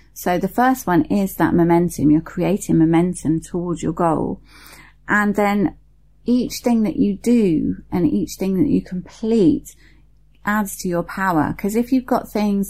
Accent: British